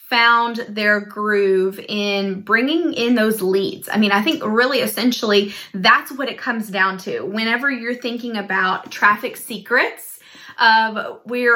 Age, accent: 20-39, American